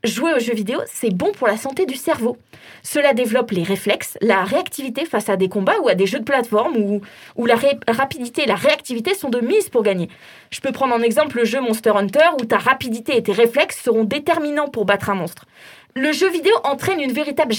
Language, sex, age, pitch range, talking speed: French, female, 20-39, 225-315 Hz, 225 wpm